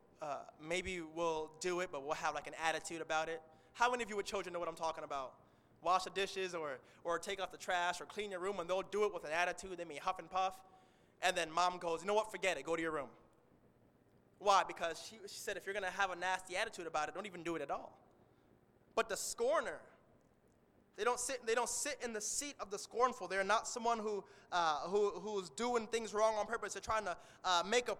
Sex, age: male, 20-39